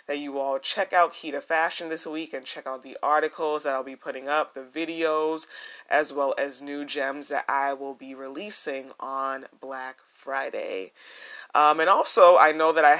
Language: English